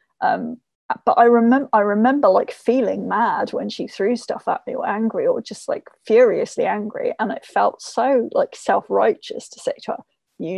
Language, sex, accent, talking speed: English, female, British, 185 wpm